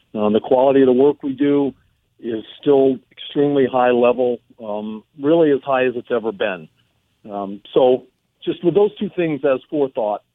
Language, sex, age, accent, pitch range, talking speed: English, male, 50-69, American, 120-155 Hz, 175 wpm